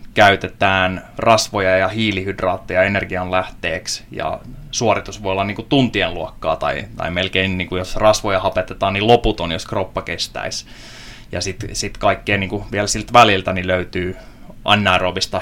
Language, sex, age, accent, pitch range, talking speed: Finnish, male, 20-39, native, 95-115 Hz, 150 wpm